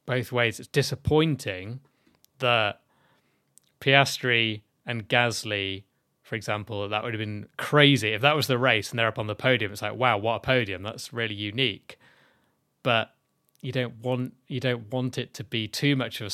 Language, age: English, 20-39